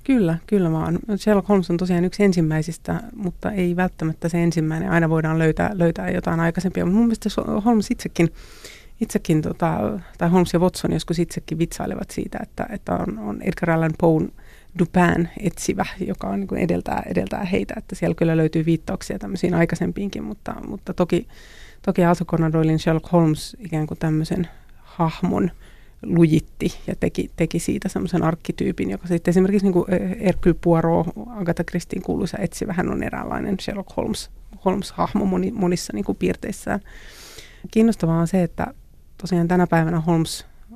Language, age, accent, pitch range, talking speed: Finnish, 30-49, native, 165-190 Hz, 145 wpm